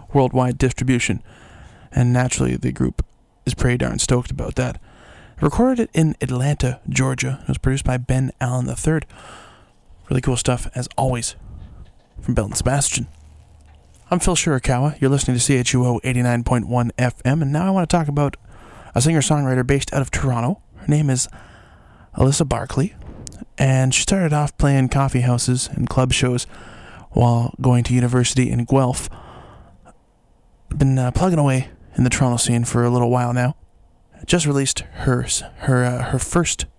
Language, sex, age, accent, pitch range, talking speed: English, male, 20-39, American, 115-135 Hz, 155 wpm